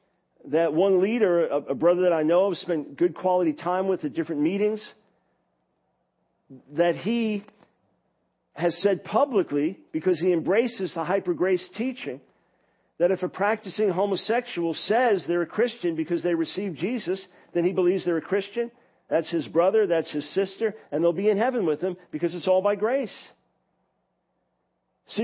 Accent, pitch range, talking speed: American, 160-200 Hz, 155 wpm